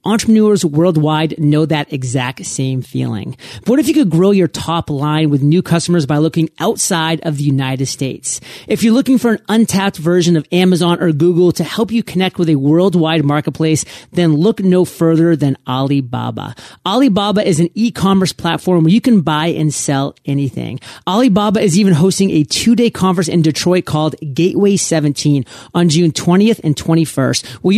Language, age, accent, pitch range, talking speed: English, 30-49, American, 155-190 Hz, 175 wpm